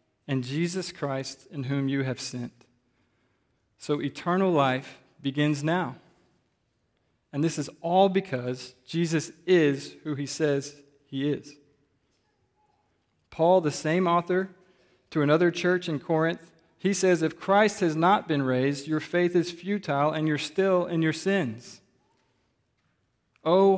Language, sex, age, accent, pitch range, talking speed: English, male, 40-59, American, 130-165 Hz, 135 wpm